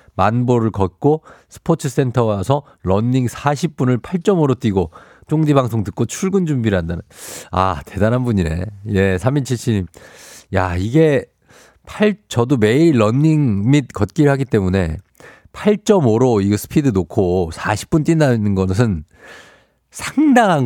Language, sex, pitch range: Korean, male, 95-140 Hz